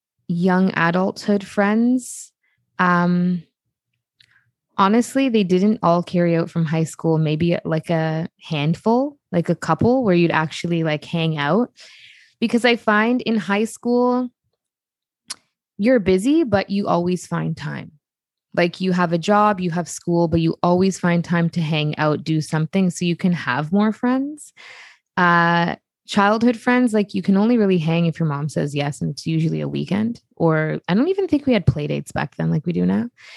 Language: English